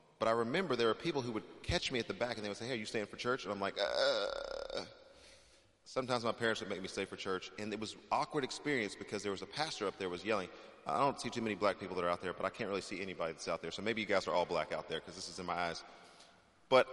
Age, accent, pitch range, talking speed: 30-49, American, 100-125 Hz, 310 wpm